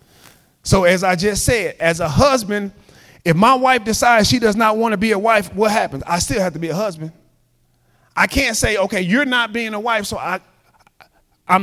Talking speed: 210 wpm